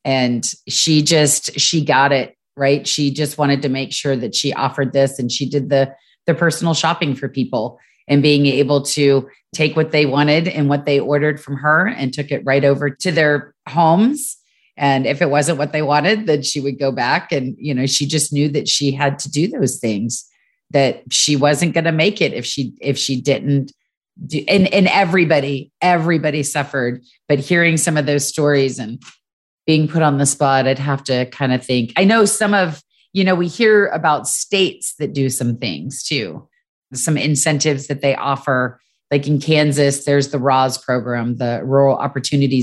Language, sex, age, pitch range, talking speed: English, female, 30-49, 135-155 Hz, 195 wpm